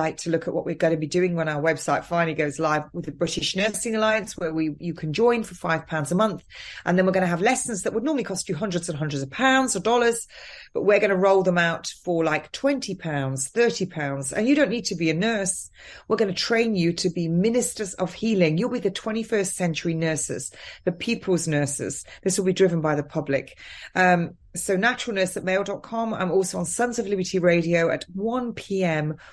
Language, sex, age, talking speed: English, female, 30-49, 225 wpm